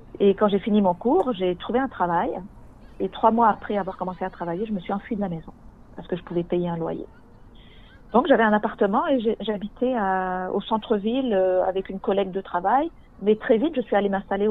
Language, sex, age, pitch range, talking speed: French, female, 40-59, 175-215 Hz, 230 wpm